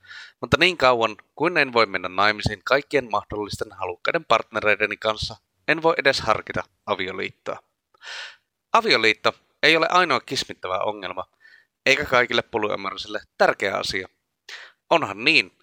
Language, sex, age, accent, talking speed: Finnish, male, 30-49, native, 120 wpm